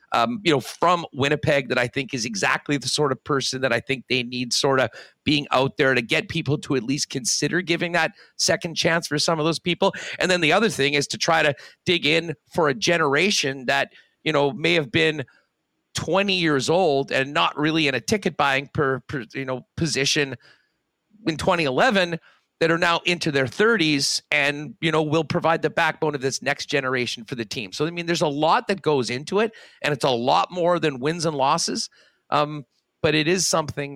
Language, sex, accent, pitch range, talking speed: English, male, American, 135-165 Hz, 215 wpm